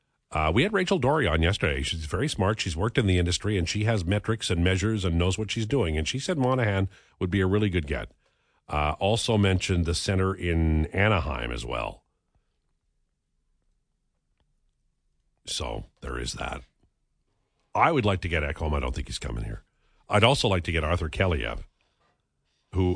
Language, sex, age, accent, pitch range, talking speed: English, male, 50-69, American, 90-110 Hz, 180 wpm